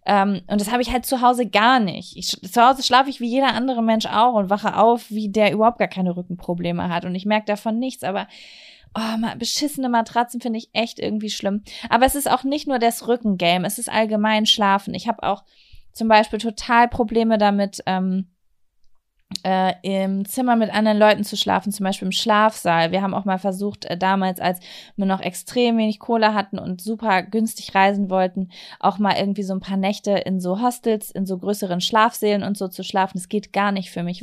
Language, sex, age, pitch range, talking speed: German, female, 20-39, 195-230 Hz, 205 wpm